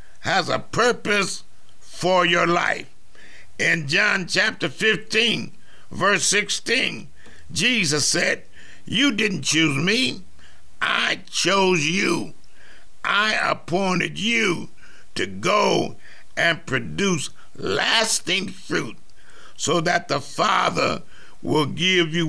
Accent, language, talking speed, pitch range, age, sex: American, English, 100 wpm, 175-220 Hz, 60-79, male